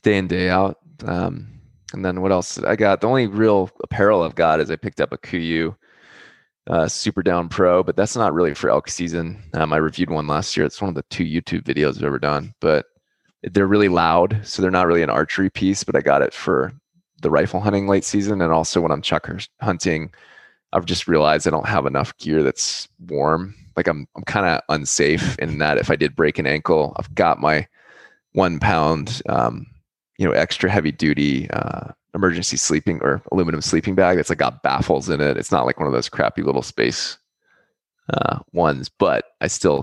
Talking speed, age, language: 210 wpm, 20-39, English